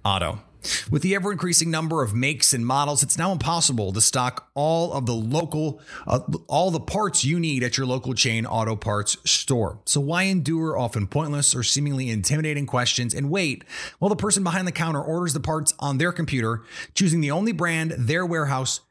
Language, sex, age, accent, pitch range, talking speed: English, male, 30-49, American, 120-170 Hz, 190 wpm